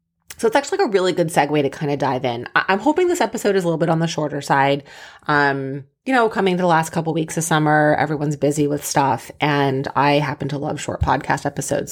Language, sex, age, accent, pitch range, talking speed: English, female, 30-49, American, 145-190 Hz, 240 wpm